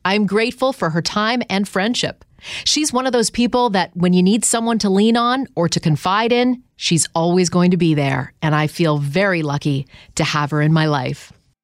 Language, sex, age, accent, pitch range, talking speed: English, female, 40-59, American, 160-230 Hz, 210 wpm